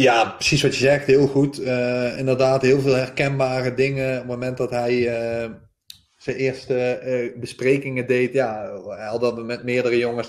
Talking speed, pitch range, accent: 180 wpm, 125-145 Hz, Dutch